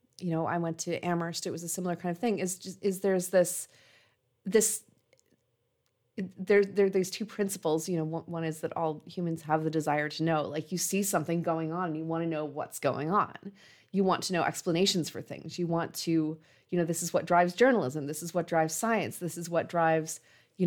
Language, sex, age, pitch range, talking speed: English, female, 30-49, 160-185 Hz, 220 wpm